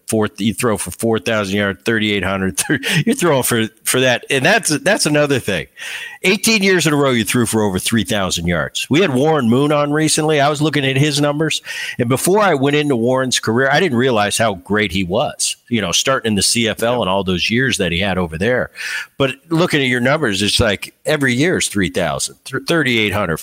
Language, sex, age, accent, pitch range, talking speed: English, male, 50-69, American, 95-130 Hz, 210 wpm